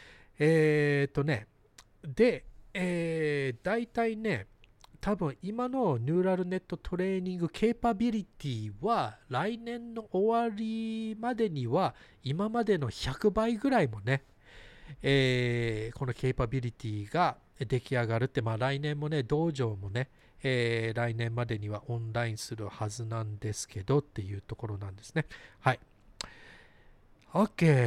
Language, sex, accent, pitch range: Japanese, male, native, 120-180 Hz